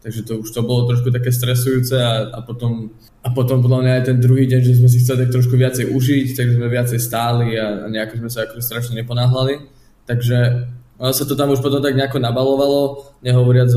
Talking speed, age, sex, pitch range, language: 215 wpm, 20-39, male, 115-125 Hz, Slovak